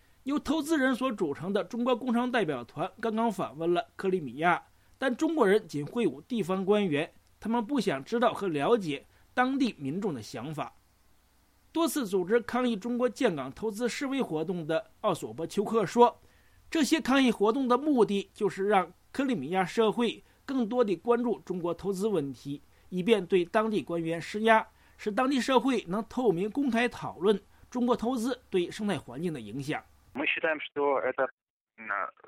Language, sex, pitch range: English, male, 175-245 Hz